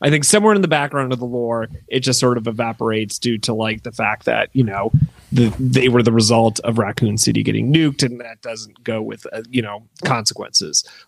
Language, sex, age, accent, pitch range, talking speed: English, male, 30-49, American, 120-150 Hz, 215 wpm